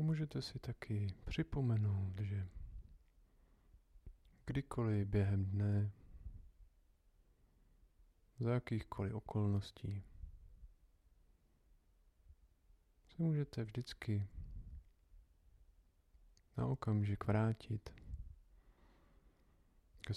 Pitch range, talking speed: 80-100 Hz, 55 wpm